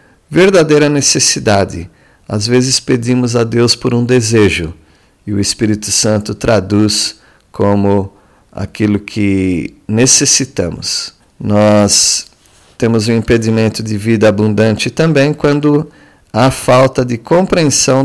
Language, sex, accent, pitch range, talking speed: Portuguese, male, Brazilian, 105-130 Hz, 105 wpm